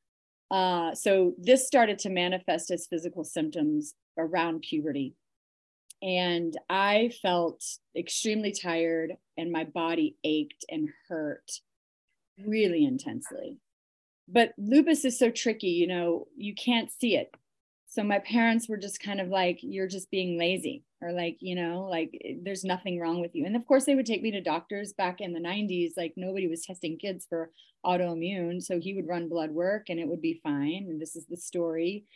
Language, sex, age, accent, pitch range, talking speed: English, female, 30-49, American, 165-215 Hz, 175 wpm